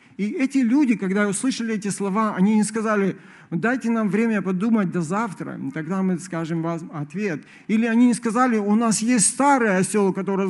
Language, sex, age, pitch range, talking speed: Russian, male, 50-69, 170-230 Hz, 175 wpm